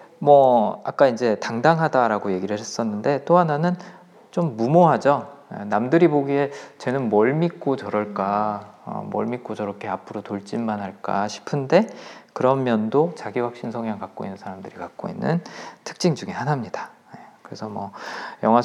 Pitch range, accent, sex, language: 105-150 Hz, native, male, Korean